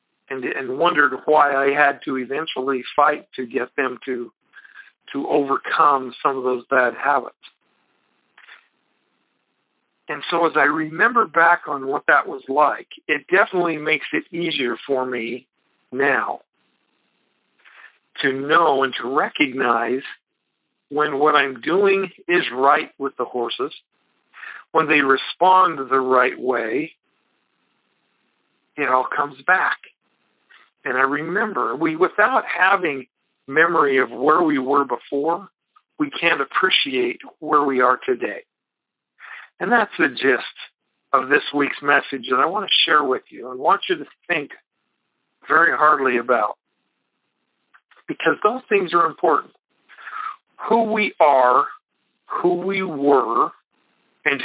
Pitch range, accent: 135-195 Hz, American